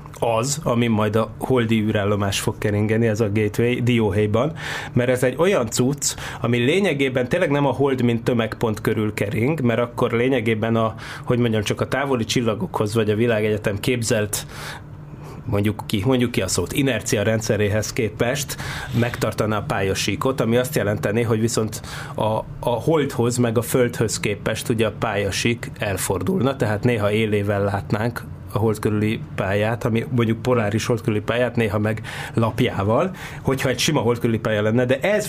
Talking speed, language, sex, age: 155 wpm, Hungarian, male, 30-49